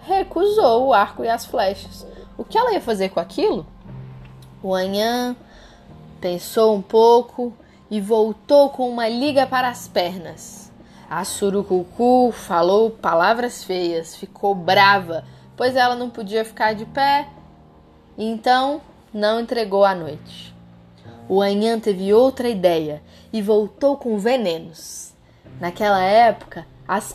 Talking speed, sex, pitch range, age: 125 wpm, female, 190-275 Hz, 10-29